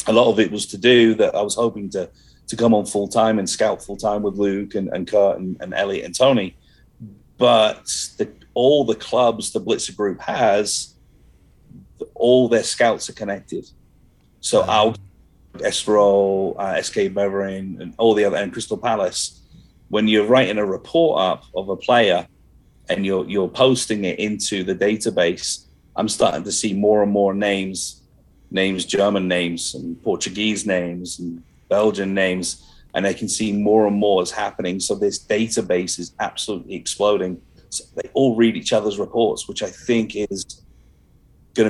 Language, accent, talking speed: English, British, 170 wpm